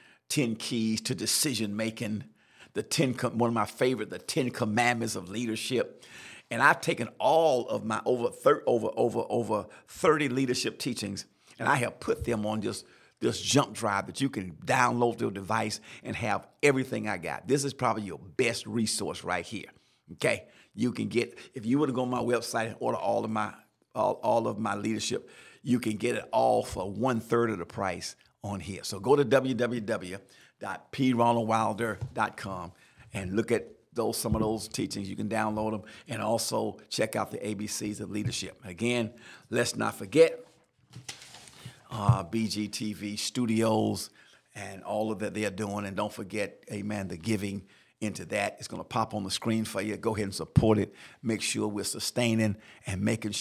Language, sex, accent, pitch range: English, male, American, 105-120 Hz